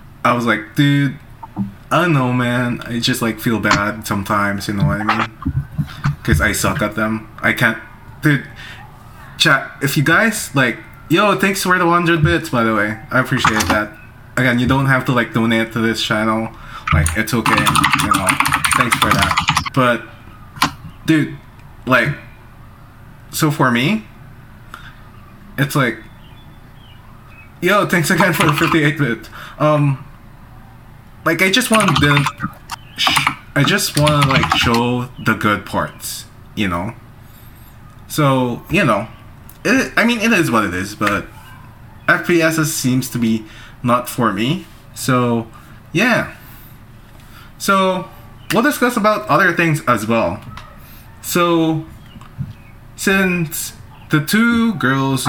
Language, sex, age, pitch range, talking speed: English, male, 20-39, 110-150 Hz, 140 wpm